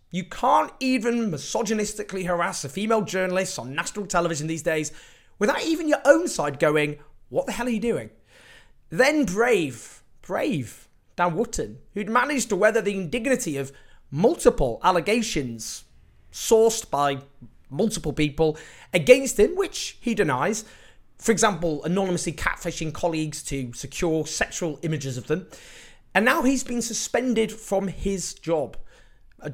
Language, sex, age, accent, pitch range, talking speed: English, male, 30-49, British, 145-215 Hz, 140 wpm